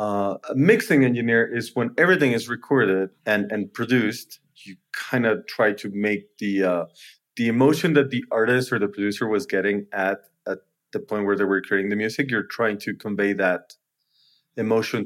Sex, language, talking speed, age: male, English, 185 wpm, 30-49